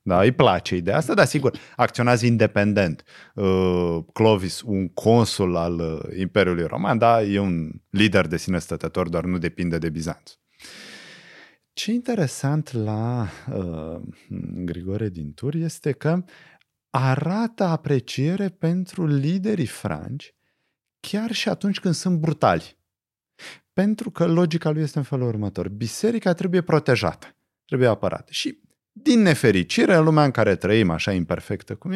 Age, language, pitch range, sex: 30-49, Romanian, 95-160 Hz, male